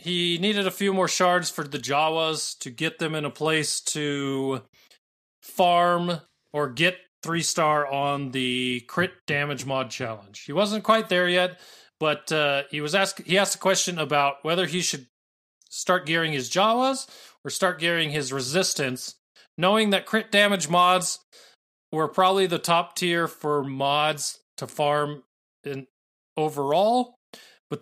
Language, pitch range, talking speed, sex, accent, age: English, 140-180 Hz, 155 wpm, male, American, 30-49